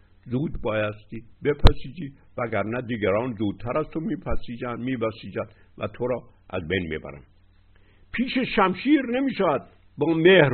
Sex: male